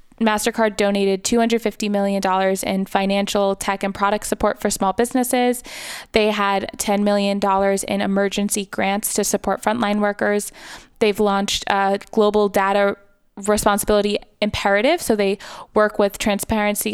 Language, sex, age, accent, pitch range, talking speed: English, female, 20-39, American, 195-215 Hz, 130 wpm